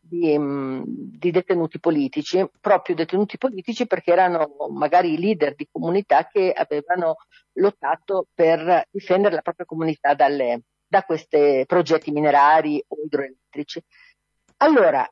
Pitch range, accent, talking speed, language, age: 165-235 Hz, native, 115 wpm, Italian, 40-59